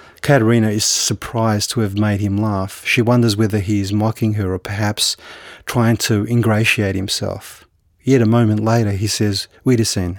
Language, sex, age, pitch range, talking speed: English, male, 30-49, 100-115 Hz, 165 wpm